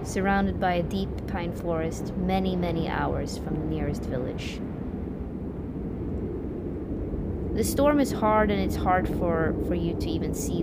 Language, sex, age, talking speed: English, female, 20-39, 145 wpm